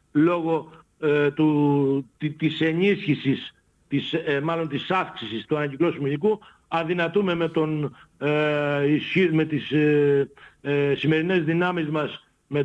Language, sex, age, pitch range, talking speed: Greek, male, 60-79, 140-170 Hz, 125 wpm